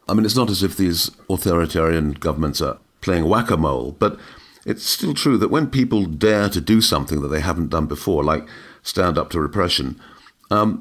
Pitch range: 80-100 Hz